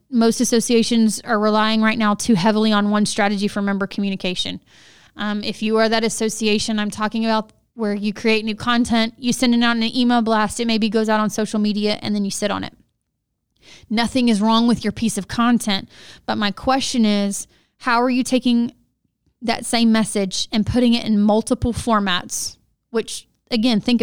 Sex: female